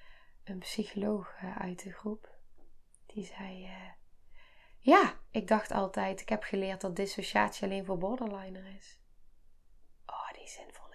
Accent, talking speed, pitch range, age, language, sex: Dutch, 135 wpm, 190-255 Hz, 20-39, Dutch, female